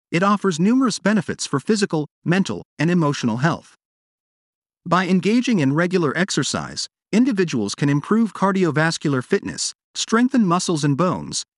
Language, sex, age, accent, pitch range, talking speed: English, male, 40-59, American, 150-200 Hz, 125 wpm